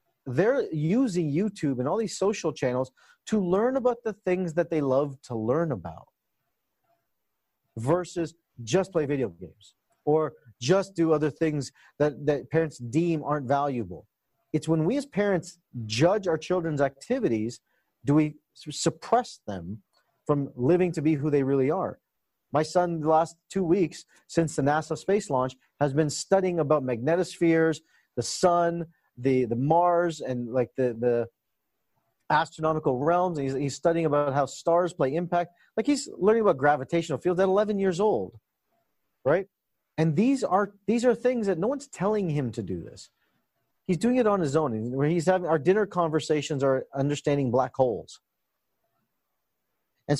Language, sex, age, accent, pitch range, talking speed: English, male, 40-59, American, 135-180 Hz, 160 wpm